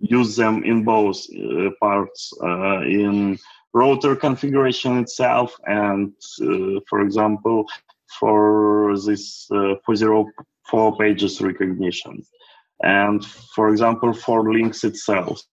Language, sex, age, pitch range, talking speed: English, male, 20-39, 100-125 Hz, 105 wpm